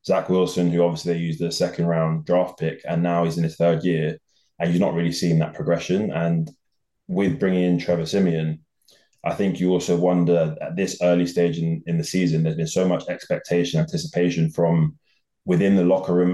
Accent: British